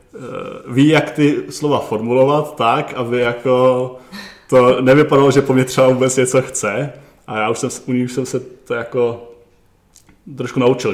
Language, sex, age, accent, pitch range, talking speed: Czech, male, 20-39, native, 120-140 Hz, 165 wpm